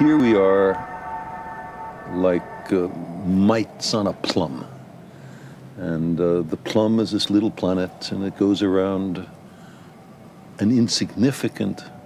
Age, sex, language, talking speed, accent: 60-79, male, French, 115 wpm, American